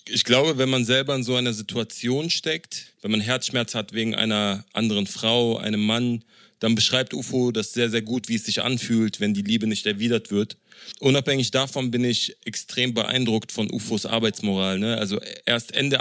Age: 30-49